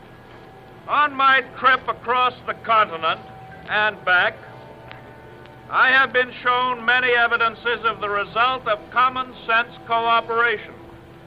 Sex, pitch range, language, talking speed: male, 225-260 Hz, English, 110 wpm